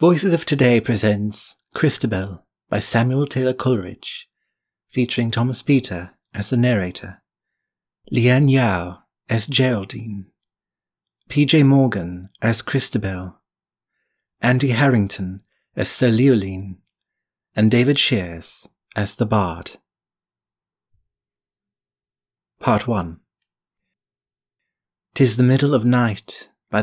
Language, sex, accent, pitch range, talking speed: English, male, British, 105-125 Hz, 95 wpm